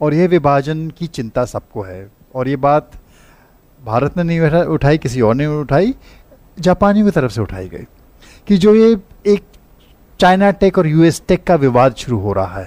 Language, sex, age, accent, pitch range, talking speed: English, male, 50-69, Indian, 130-190 Hz, 180 wpm